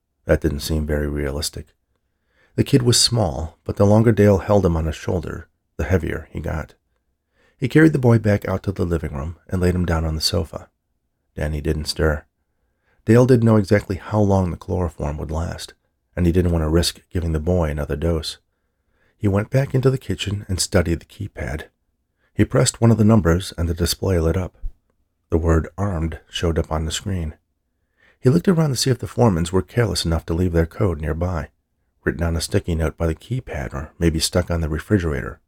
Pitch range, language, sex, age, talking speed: 80-100 Hz, English, male, 40-59, 205 wpm